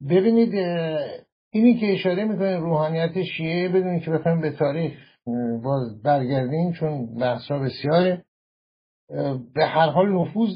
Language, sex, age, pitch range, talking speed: Persian, male, 60-79, 140-180 Hz, 120 wpm